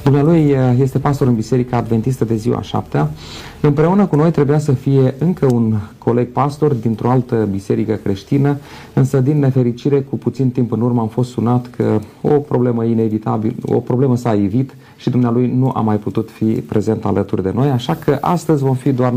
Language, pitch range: Romanian, 115-145 Hz